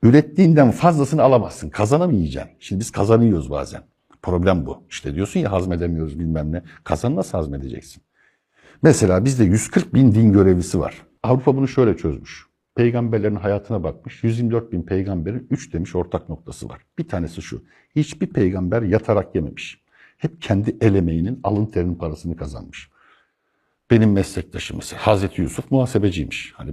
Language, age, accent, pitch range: Turkish, 60-79, native, 85-115 Hz